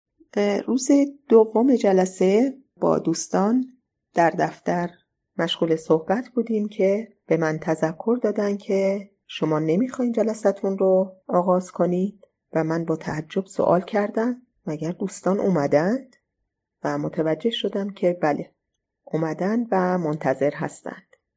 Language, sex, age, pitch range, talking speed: Persian, female, 30-49, 160-205 Hz, 110 wpm